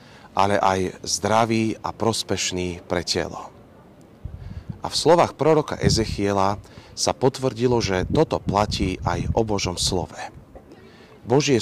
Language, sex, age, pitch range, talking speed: Slovak, male, 40-59, 95-110 Hz, 115 wpm